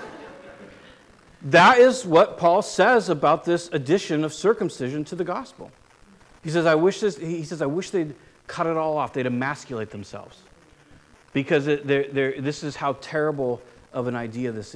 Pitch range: 135-200 Hz